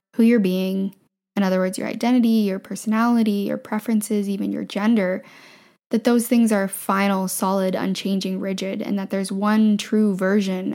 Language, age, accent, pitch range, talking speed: English, 10-29, American, 195-230 Hz, 160 wpm